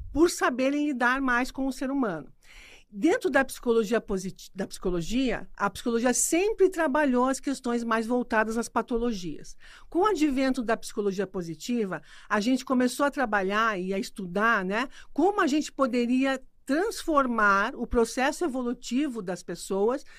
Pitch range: 210-260 Hz